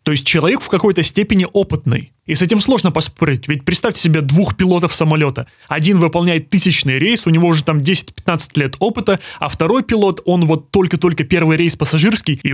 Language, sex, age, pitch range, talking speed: Russian, male, 20-39, 155-185 Hz, 180 wpm